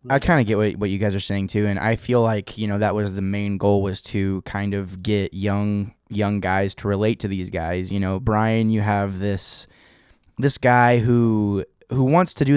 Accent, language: American, English